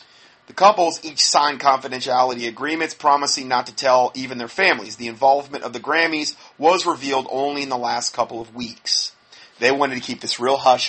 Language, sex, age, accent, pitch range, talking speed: English, male, 30-49, American, 120-145 Hz, 185 wpm